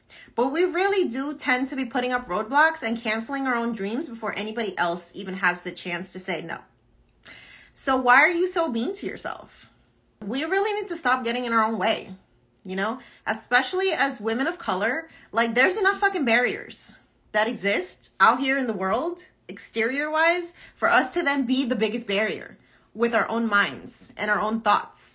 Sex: female